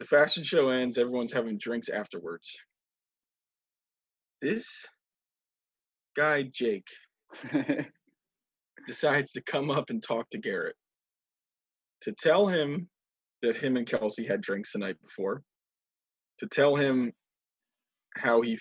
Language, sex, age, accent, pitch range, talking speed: English, male, 20-39, American, 115-170 Hz, 115 wpm